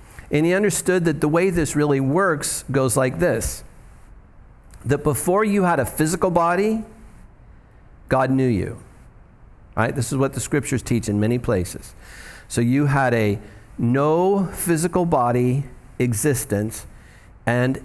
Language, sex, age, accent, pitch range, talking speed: English, male, 50-69, American, 105-145 Hz, 140 wpm